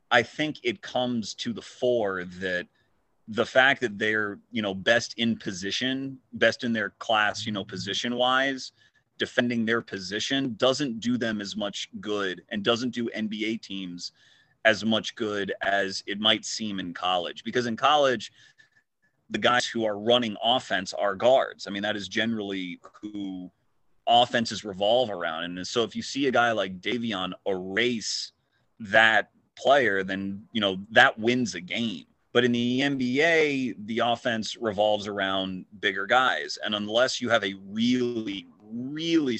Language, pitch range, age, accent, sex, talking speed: English, 95-120 Hz, 30-49, American, male, 155 wpm